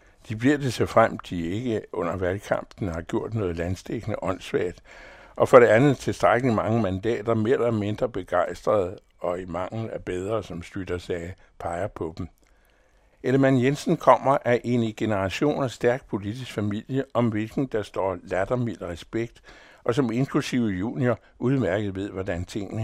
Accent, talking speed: American, 160 wpm